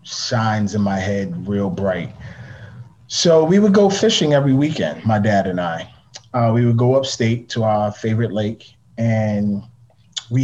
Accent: American